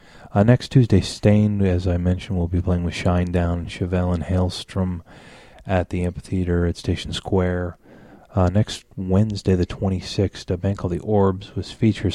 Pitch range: 90-100 Hz